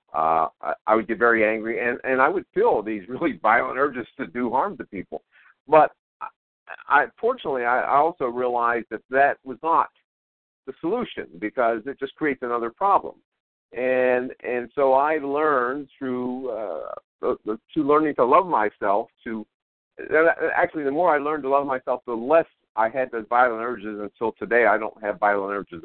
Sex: male